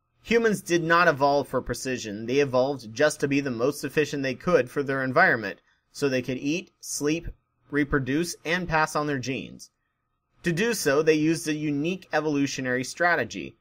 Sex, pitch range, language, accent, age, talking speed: male, 125-165 Hz, English, American, 30-49, 170 wpm